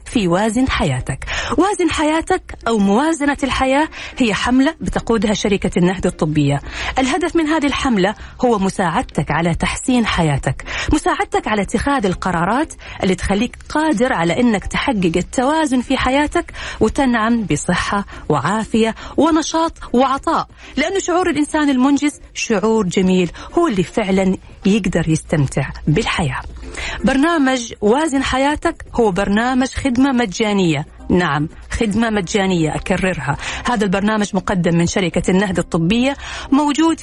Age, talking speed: 40-59, 115 wpm